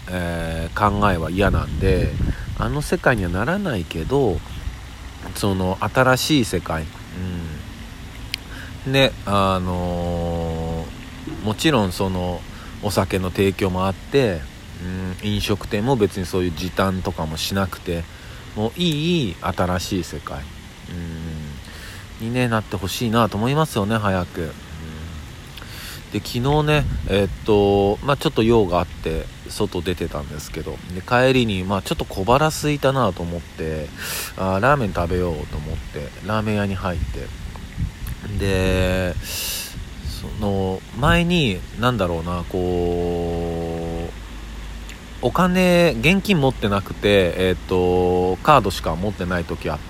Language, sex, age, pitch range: Japanese, male, 50-69, 85-110 Hz